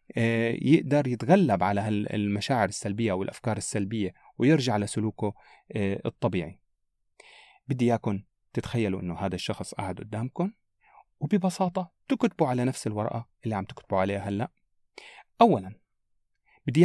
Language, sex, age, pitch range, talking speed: Arabic, male, 30-49, 100-140 Hz, 110 wpm